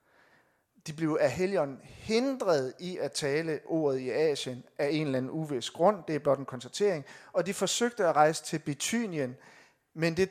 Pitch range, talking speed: 150-200 Hz, 180 wpm